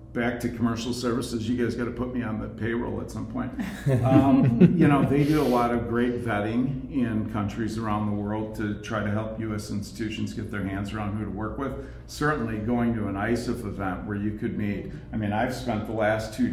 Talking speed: 225 wpm